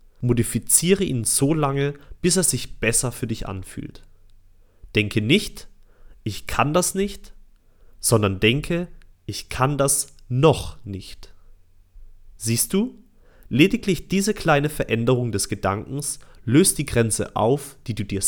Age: 30-49